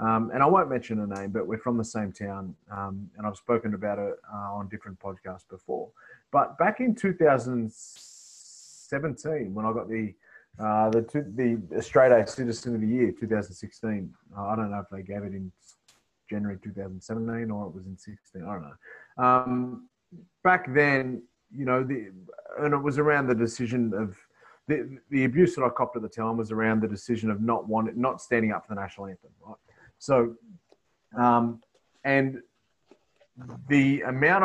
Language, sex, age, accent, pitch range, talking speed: English, male, 30-49, Australian, 105-135 Hz, 175 wpm